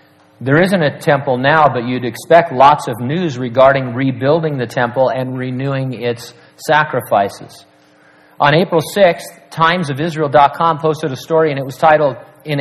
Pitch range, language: 125-160 Hz, English